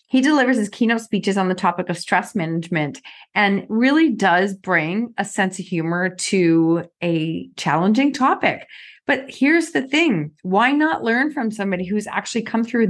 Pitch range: 185-235 Hz